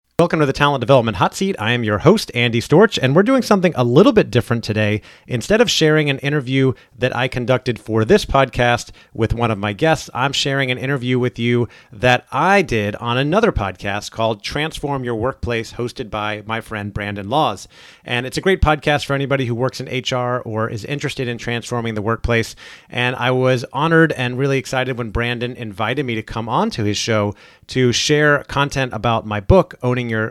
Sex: male